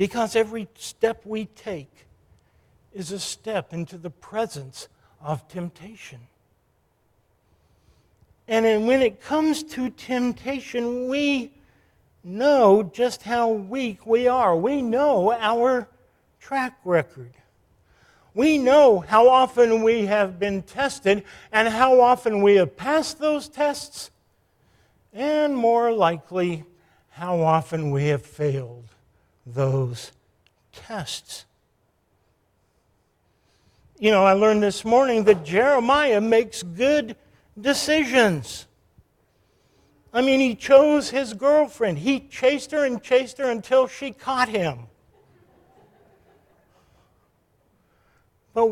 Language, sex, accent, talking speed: English, male, American, 105 wpm